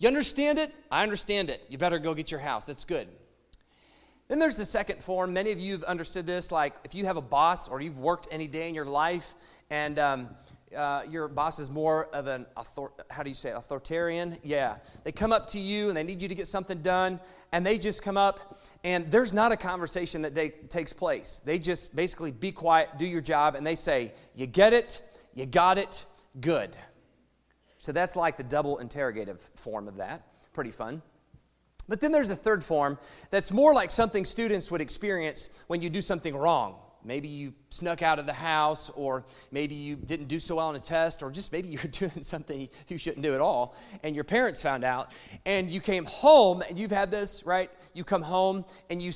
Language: English